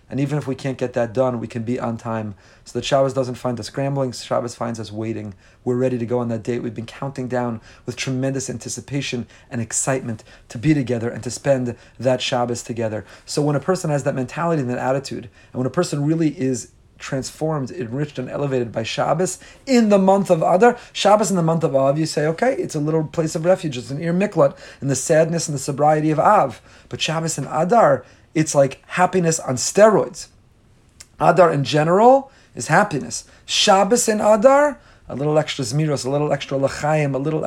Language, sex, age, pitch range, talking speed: English, male, 30-49, 125-160 Hz, 210 wpm